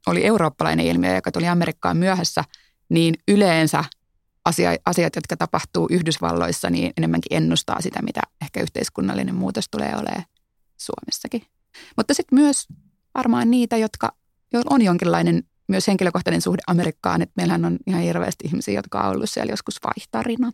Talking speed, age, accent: 140 wpm, 30-49, native